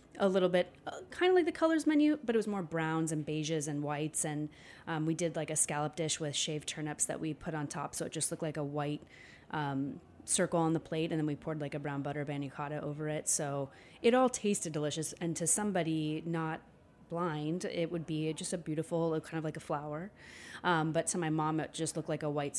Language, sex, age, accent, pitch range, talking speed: English, female, 30-49, American, 150-170 Hz, 235 wpm